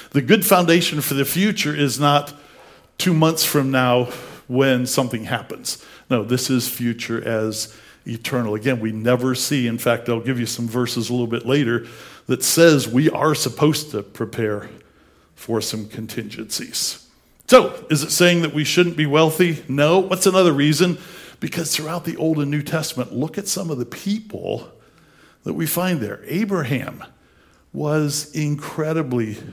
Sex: male